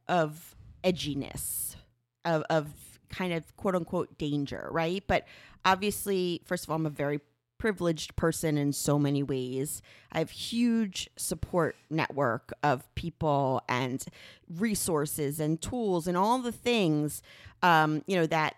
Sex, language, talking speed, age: female, English, 140 wpm, 30-49